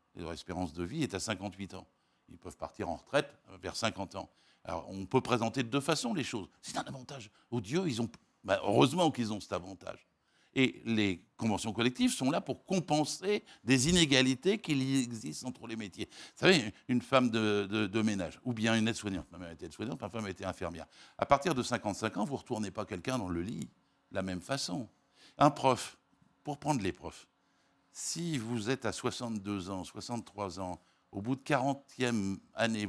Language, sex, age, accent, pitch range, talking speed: French, male, 60-79, French, 95-130 Hz, 210 wpm